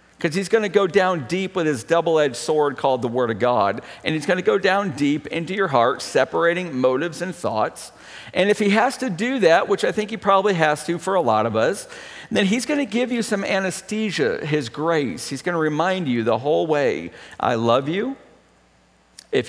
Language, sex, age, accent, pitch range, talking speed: English, male, 50-69, American, 125-180 Hz, 220 wpm